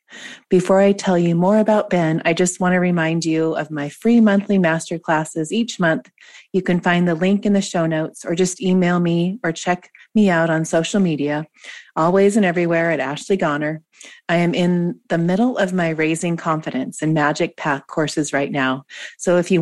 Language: English